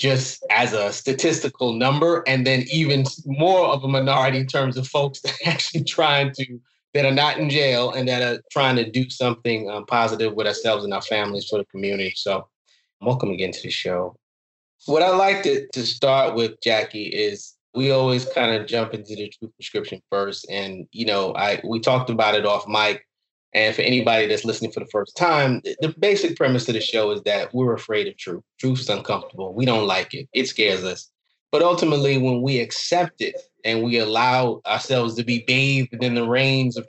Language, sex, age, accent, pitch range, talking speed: English, male, 20-39, American, 110-135 Hz, 205 wpm